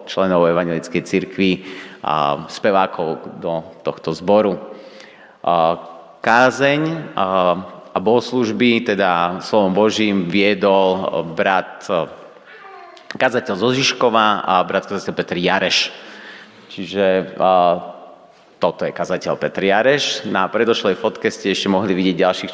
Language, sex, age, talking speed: Slovak, male, 30-49, 110 wpm